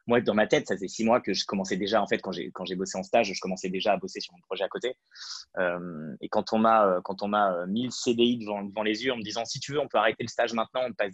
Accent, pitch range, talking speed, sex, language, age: French, 100-120 Hz, 325 wpm, male, French, 20-39